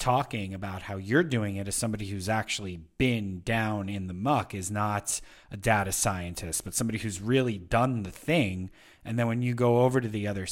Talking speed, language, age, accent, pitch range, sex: 205 wpm, English, 30-49, American, 100-125 Hz, male